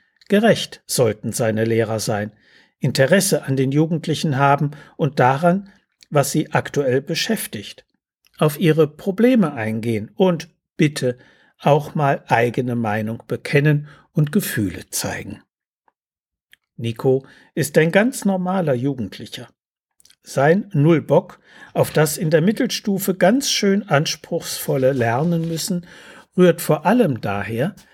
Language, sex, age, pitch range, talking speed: German, male, 60-79, 125-175 Hz, 110 wpm